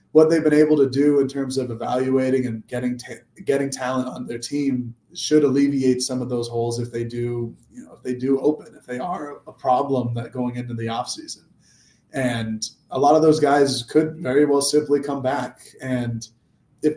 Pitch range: 125-140 Hz